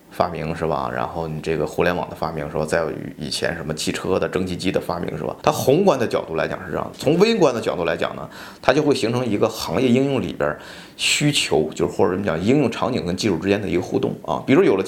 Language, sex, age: Chinese, male, 20-39